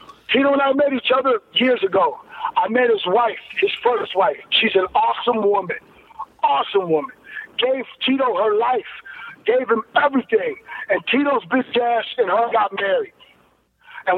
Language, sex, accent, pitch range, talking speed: English, male, American, 225-310 Hz, 155 wpm